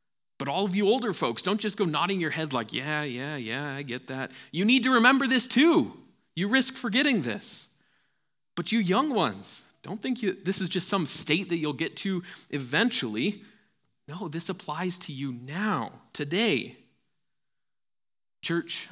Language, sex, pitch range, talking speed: English, male, 130-175 Hz, 170 wpm